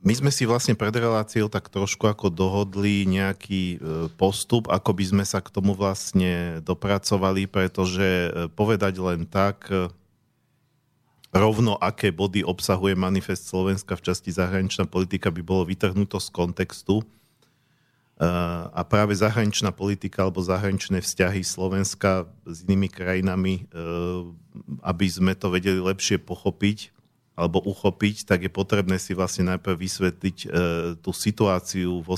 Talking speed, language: 125 wpm, Slovak